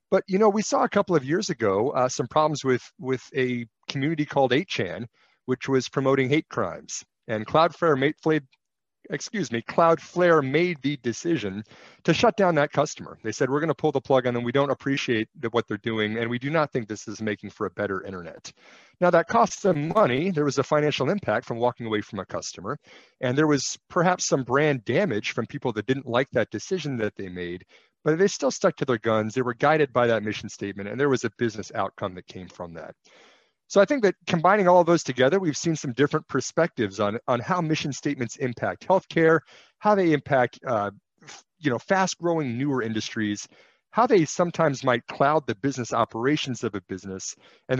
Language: English